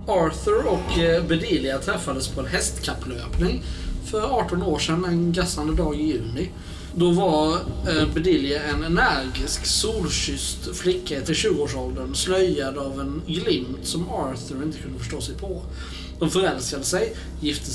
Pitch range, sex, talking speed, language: 120-175 Hz, male, 135 wpm, Swedish